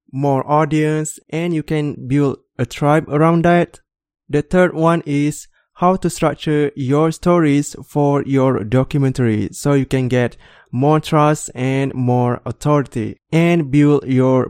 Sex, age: male, 20-39